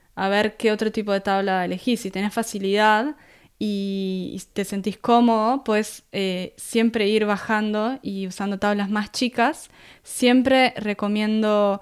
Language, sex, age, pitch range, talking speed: Spanish, female, 20-39, 195-235 Hz, 135 wpm